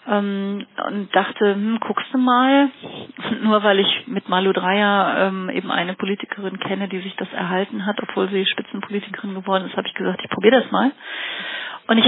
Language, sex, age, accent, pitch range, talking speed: German, female, 40-59, German, 185-220 Hz, 185 wpm